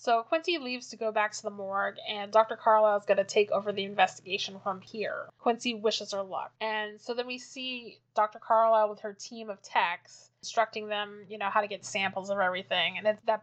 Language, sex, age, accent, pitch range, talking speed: English, female, 20-39, American, 205-240 Hz, 220 wpm